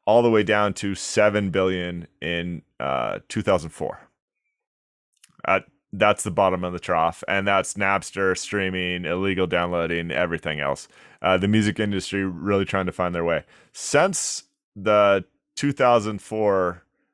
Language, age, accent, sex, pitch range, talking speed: English, 30-49, American, male, 90-105 Hz, 130 wpm